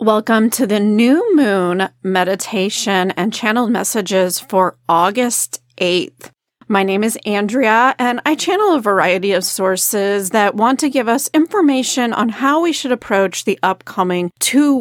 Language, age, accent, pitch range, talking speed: English, 30-49, American, 190-250 Hz, 150 wpm